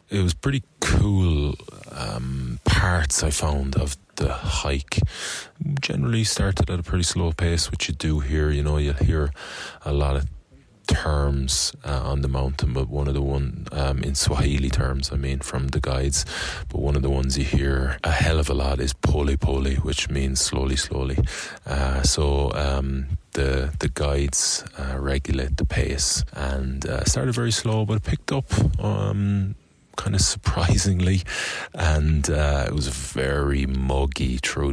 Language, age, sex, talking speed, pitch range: English, 30-49, male, 170 wpm, 70-85 Hz